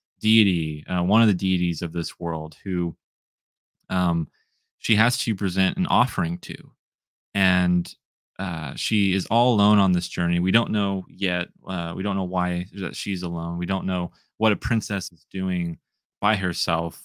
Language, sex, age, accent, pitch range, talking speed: English, male, 20-39, American, 85-105 Hz, 170 wpm